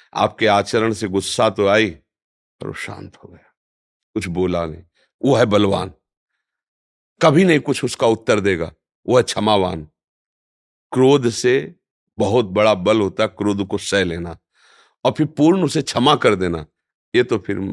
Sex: male